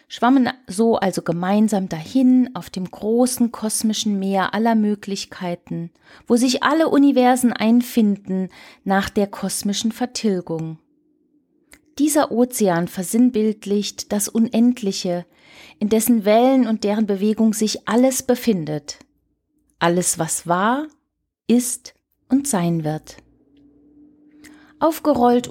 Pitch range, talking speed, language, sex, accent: 200-265 Hz, 100 wpm, German, female, German